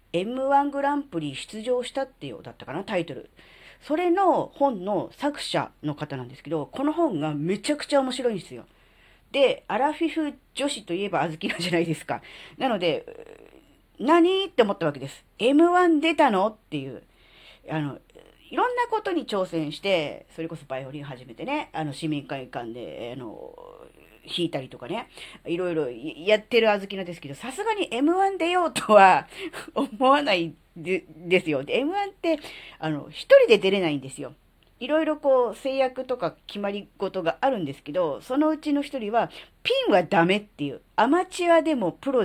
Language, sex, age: Japanese, female, 40-59